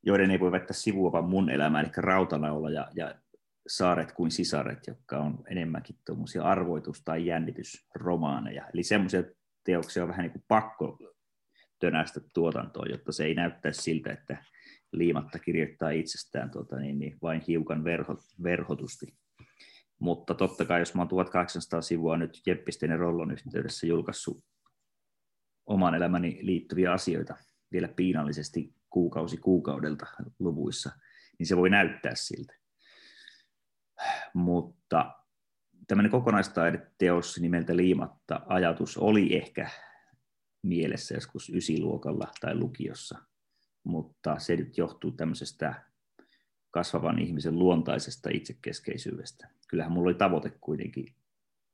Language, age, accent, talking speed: Finnish, 30-49, native, 115 wpm